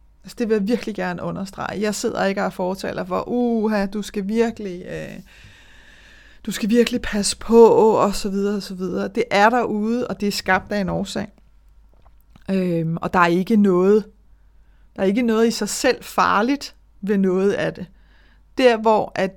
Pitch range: 190-230 Hz